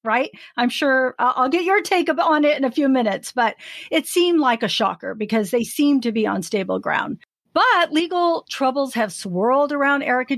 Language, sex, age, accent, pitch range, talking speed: English, female, 50-69, American, 200-260 Hz, 195 wpm